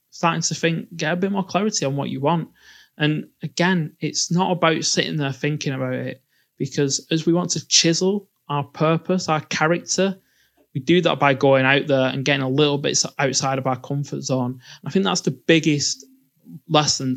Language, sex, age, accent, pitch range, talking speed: English, male, 20-39, British, 130-165 Hz, 190 wpm